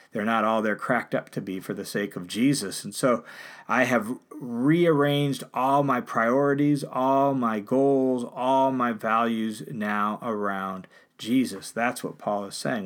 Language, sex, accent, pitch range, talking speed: English, male, American, 115-145 Hz, 165 wpm